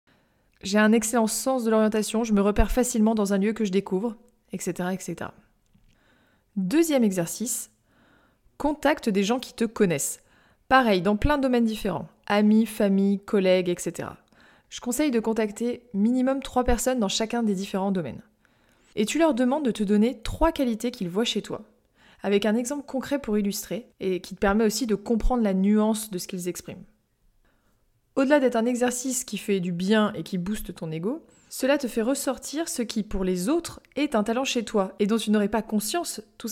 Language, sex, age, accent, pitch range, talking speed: French, female, 20-39, French, 190-240 Hz, 185 wpm